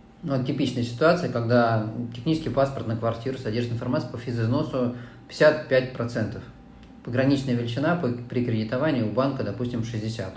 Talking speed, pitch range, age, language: 120 wpm, 110-125 Hz, 20-39, Russian